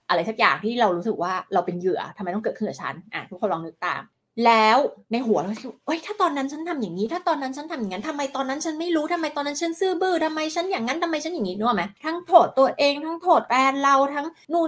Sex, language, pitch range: female, Thai, 185-275 Hz